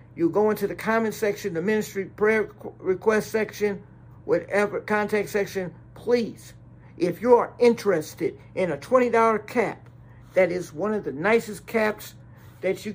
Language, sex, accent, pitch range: English, male, American, 175-210 Hz